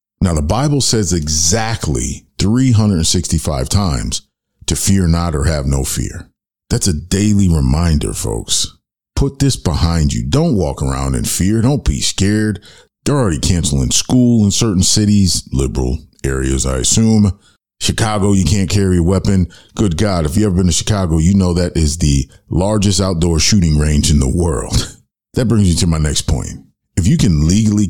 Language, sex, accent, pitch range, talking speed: English, male, American, 80-105 Hz, 170 wpm